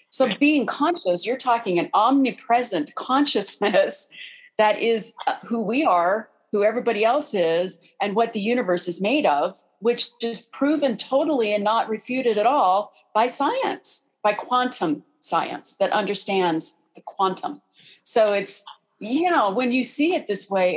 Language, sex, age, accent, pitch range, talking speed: English, female, 40-59, American, 185-250 Hz, 150 wpm